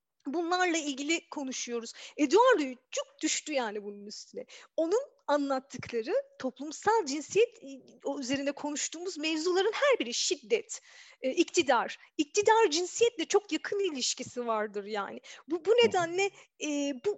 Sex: female